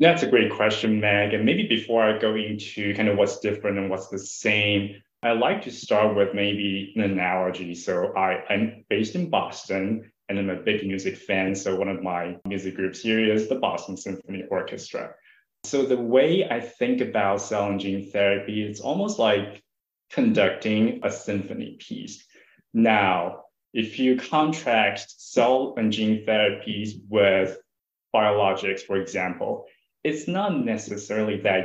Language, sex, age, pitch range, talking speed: English, male, 20-39, 100-120 Hz, 160 wpm